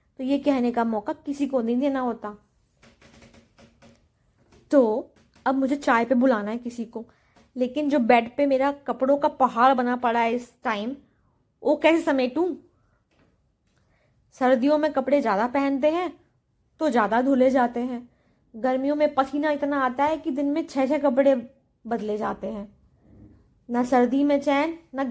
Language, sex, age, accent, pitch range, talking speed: Hindi, female, 20-39, native, 240-280 Hz, 160 wpm